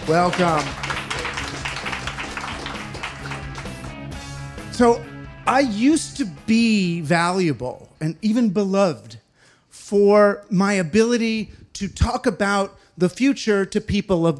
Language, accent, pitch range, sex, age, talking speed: English, American, 150-210 Hz, male, 40-59, 90 wpm